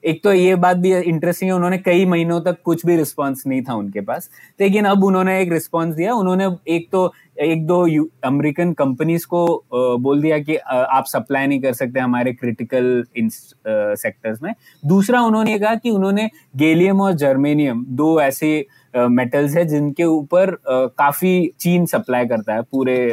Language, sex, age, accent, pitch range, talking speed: Hindi, male, 20-39, native, 135-185 Hz, 175 wpm